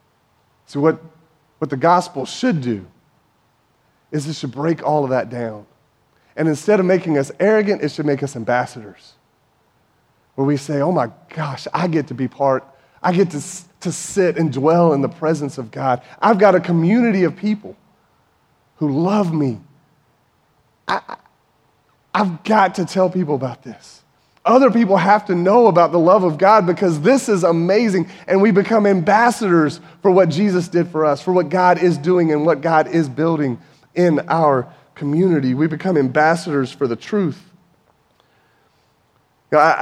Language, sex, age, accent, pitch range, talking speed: English, male, 30-49, American, 135-180 Hz, 165 wpm